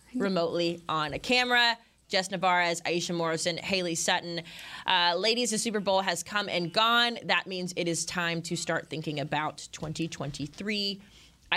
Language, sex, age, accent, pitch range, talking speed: English, female, 20-39, American, 165-190 Hz, 150 wpm